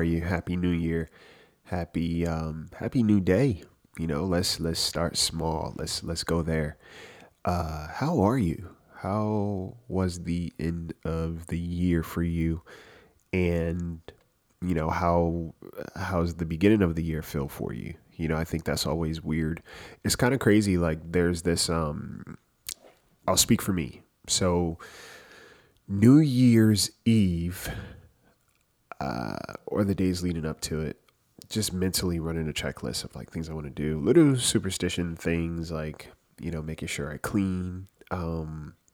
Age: 20-39